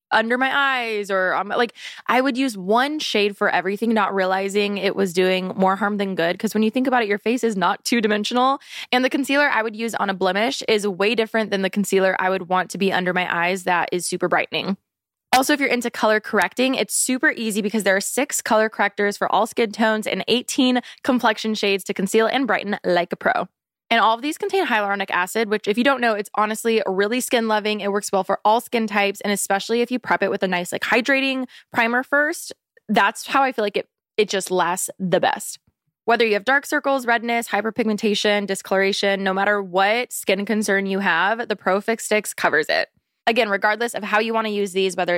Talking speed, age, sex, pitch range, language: 225 wpm, 20-39, female, 195-235 Hz, English